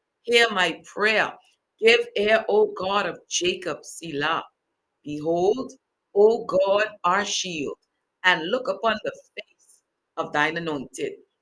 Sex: female